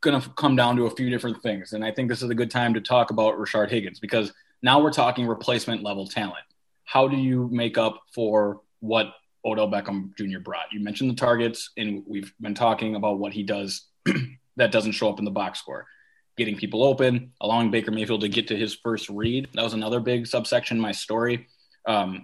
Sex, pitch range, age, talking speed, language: male, 105-120 Hz, 20-39, 215 wpm, English